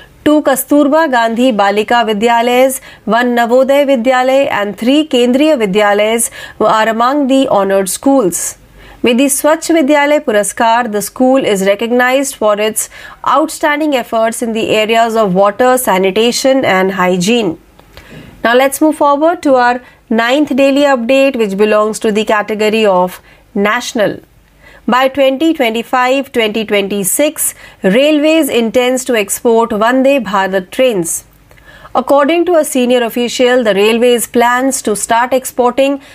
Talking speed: 125 wpm